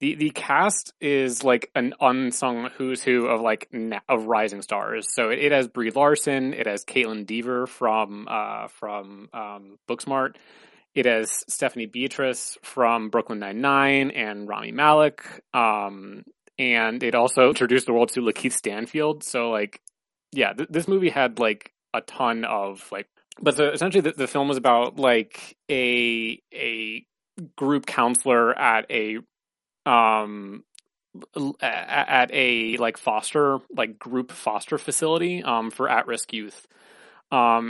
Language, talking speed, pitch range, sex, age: English, 145 wpm, 110-130 Hz, male, 20-39